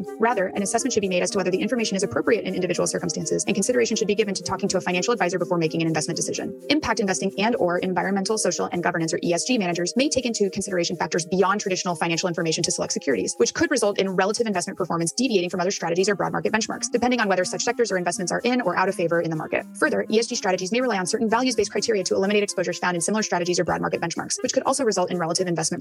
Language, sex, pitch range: English, female, 175-220 Hz